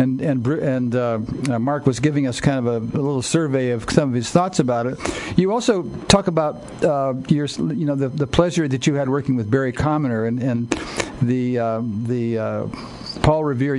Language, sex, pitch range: English, male, 130-155 Hz